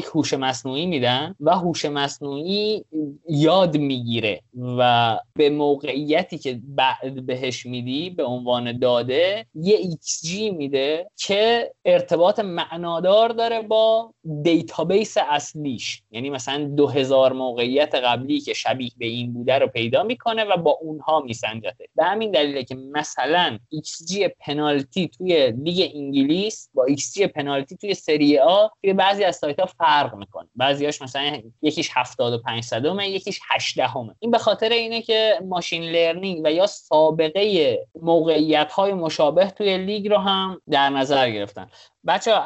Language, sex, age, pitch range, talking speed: Persian, male, 30-49, 135-190 Hz, 135 wpm